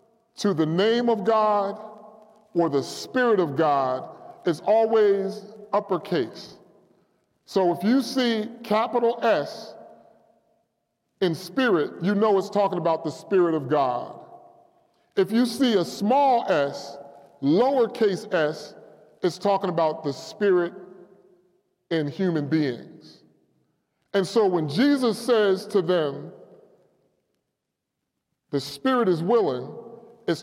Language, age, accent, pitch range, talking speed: English, 40-59, American, 175-235 Hz, 115 wpm